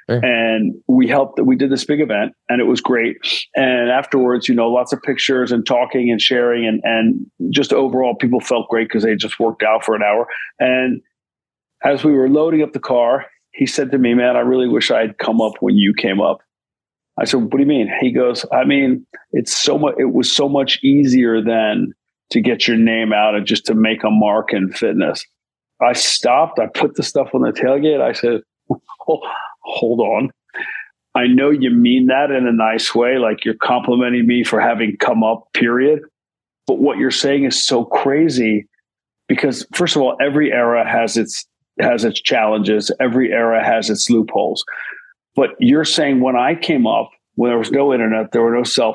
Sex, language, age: male, English, 40-59